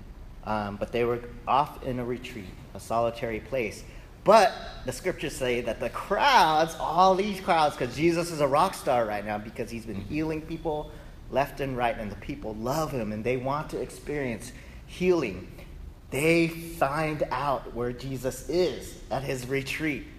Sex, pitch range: male, 115-170 Hz